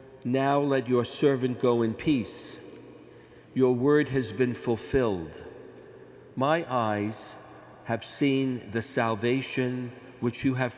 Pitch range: 110-135 Hz